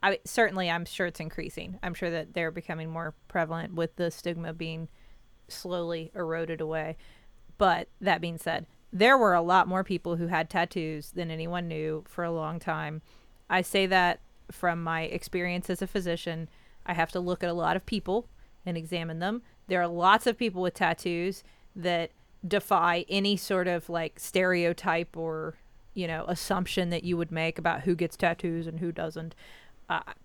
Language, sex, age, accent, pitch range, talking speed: English, female, 30-49, American, 165-190 Hz, 180 wpm